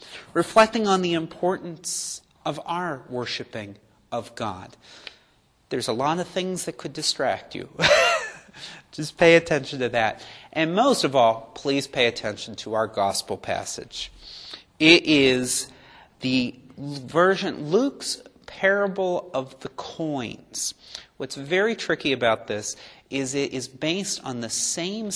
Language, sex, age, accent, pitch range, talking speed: English, male, 40-59, American, 115-165 Hz, 135 wpm